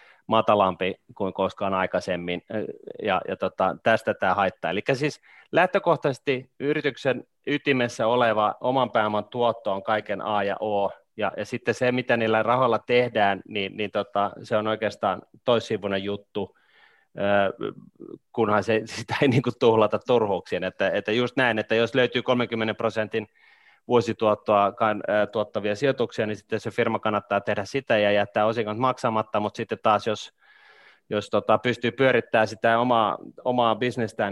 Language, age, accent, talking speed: Finnish, 30-49, native, 140 wpm